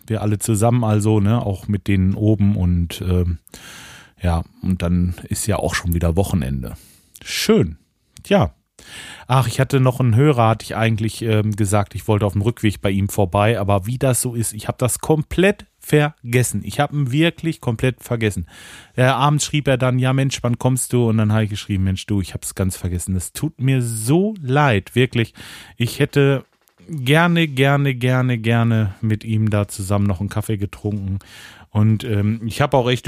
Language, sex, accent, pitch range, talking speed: German, male, German, 100-125 Hz, 190 wpm